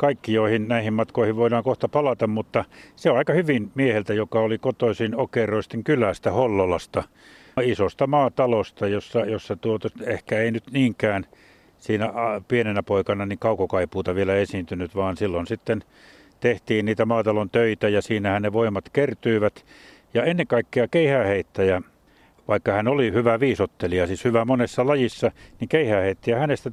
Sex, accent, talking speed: male, native, 140 wpm